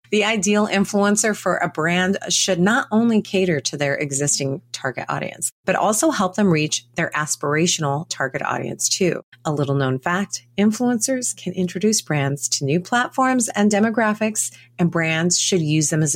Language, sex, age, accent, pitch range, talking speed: English, female, 30-49, American, 145-205 Hz, 165 wpm